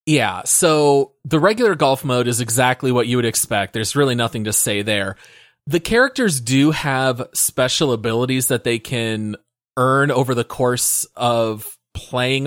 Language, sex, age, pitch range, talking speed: English, male, 30-49, 125-160 Hz, 160 wpm